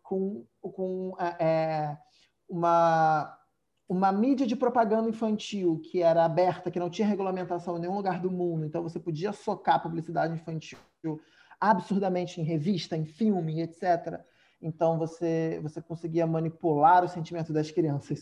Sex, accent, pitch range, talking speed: male, Brazilian, 160-190 Hz, 140 wpm